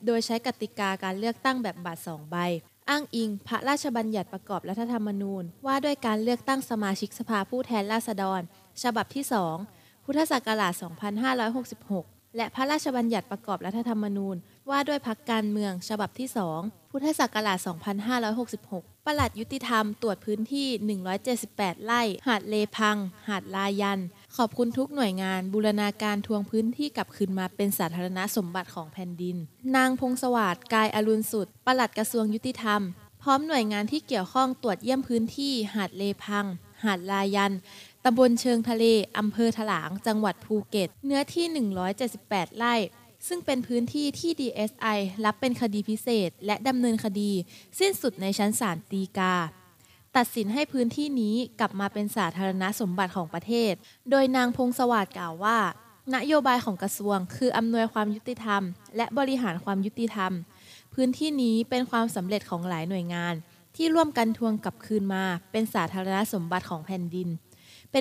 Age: 20-39